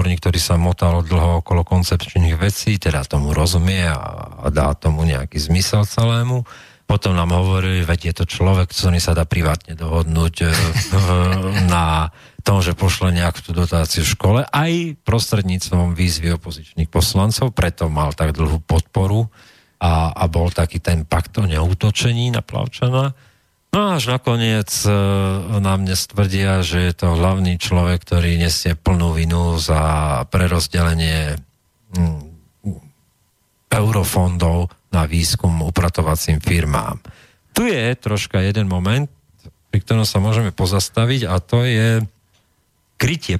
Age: 40-59